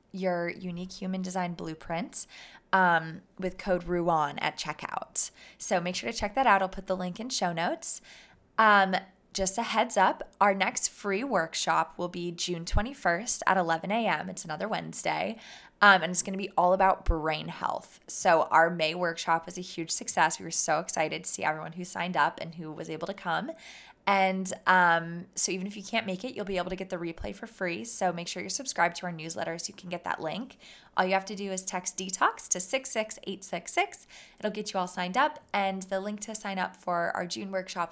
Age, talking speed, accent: 20-39, 215 wpm, American